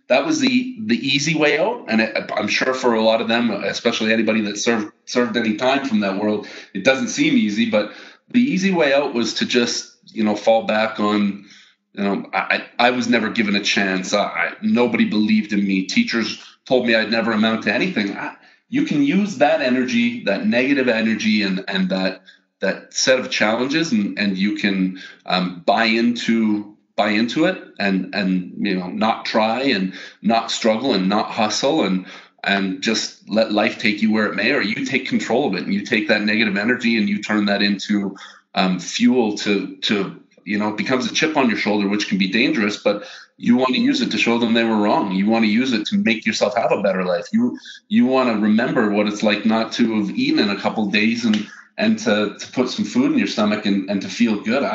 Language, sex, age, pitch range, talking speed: English, male, 30-49, 105-135 Hz, 225 wpm